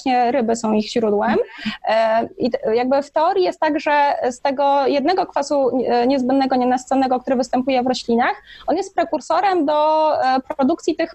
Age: 20-39